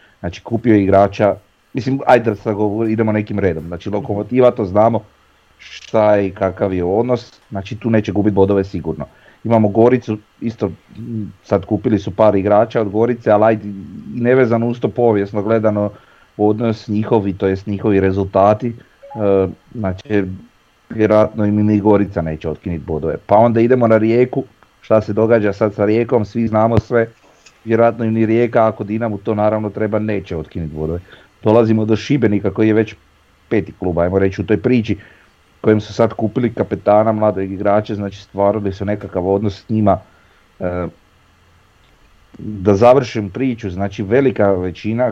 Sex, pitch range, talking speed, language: male, 95-115 Hz, 150 wpm, Croatian